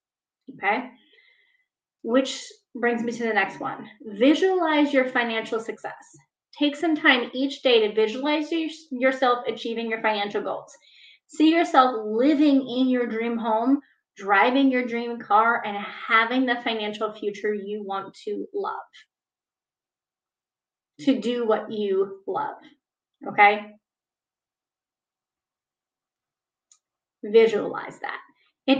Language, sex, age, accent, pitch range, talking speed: English, female, 30-49, American, 220-275 Hz, 110 wpm